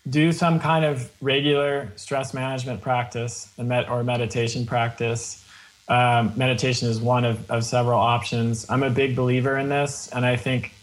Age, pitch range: 20-39, 120-140 Hz